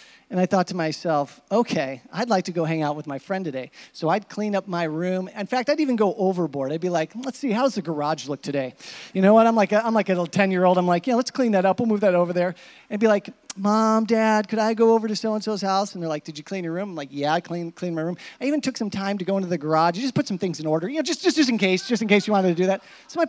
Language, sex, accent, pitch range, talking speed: English, male, American, 165-230 Hz, 315 wpm